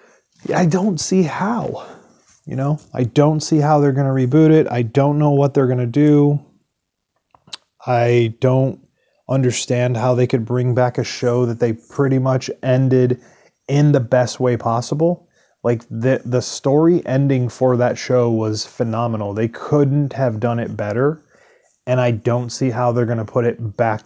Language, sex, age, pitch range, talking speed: English, male, 30-49, 115-140 Hz, 175 wpm